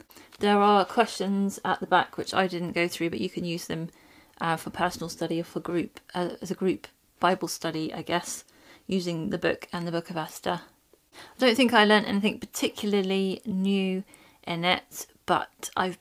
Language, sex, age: English, female, 30-49